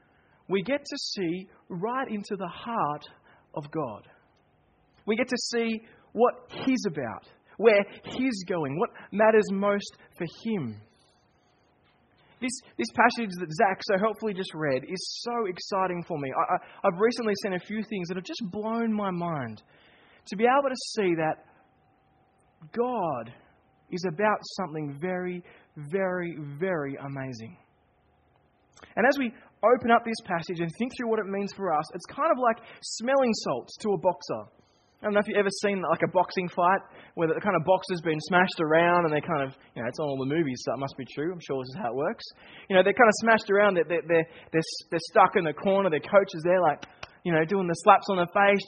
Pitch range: 165-220 Hz